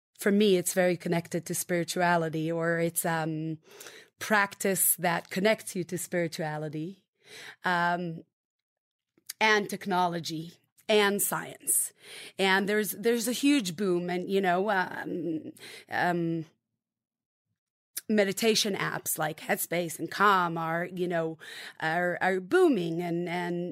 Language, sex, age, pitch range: English, female, 30-49, 175-220 Hz